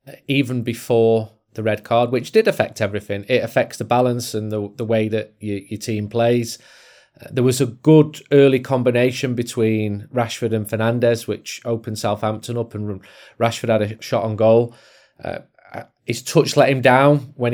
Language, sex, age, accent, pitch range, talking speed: English, male, 30-49, British, 115-130 Hz, 175 wpm